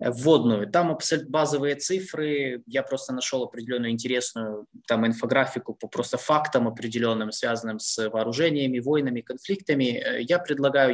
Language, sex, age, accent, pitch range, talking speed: Ukrainian, male, 20-39, native, 115-150 Hz, 120 wpm